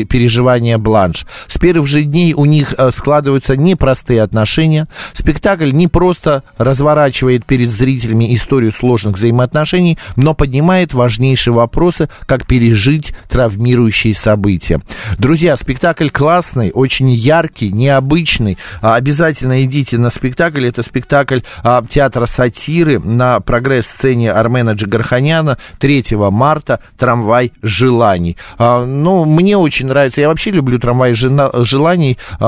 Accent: native